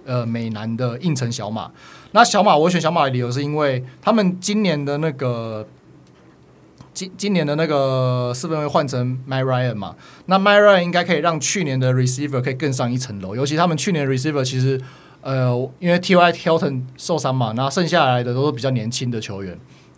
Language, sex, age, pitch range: Chinese, male, 20-39, 125-155 Hz